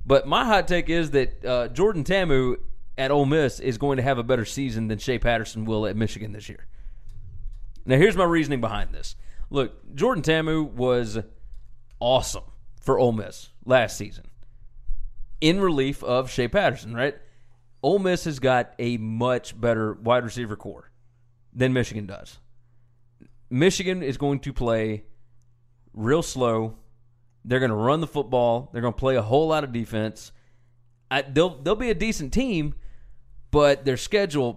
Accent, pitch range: American, 115-140 Hz